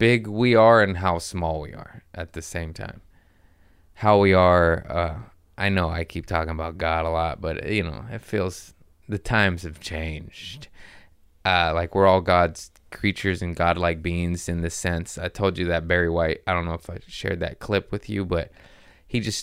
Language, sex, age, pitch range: English, male, 20-39, 85-100 Hz